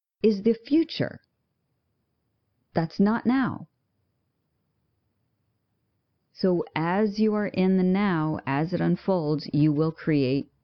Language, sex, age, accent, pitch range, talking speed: English, female, 40-59, American, 145-190 Hz, 105 wpm